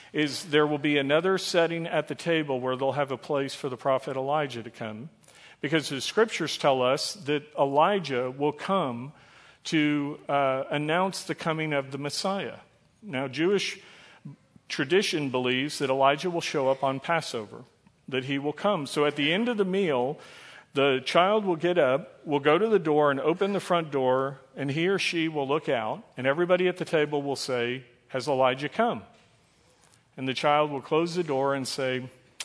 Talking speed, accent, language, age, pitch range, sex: 185 wpm, American, English, 50-69, 135-160 Hz, male